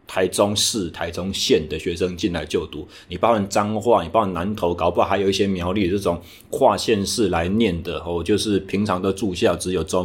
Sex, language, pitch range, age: male, Chinese, 90-110 Hz, 30-49